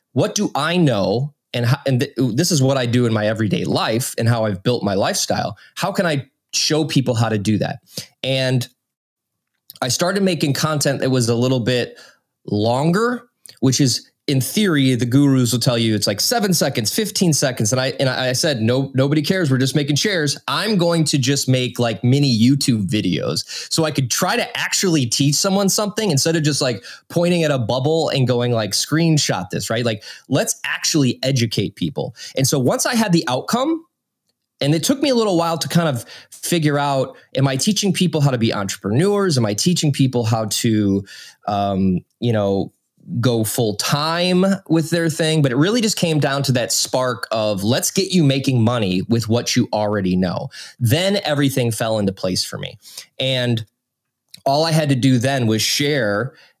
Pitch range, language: 120-155 Hz, English